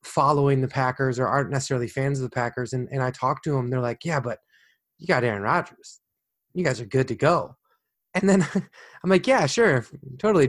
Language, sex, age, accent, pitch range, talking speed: English, male, 20-39, American, 125-155 Hz, 210 wpm